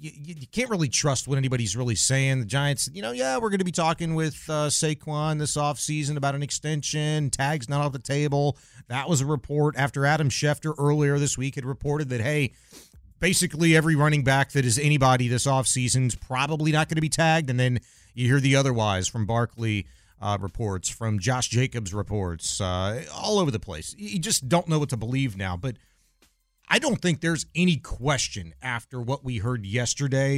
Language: English